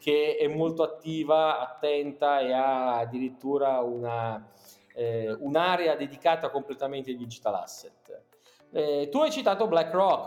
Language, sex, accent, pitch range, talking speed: Italian, male, native, 140-190 Hz, 125 wpm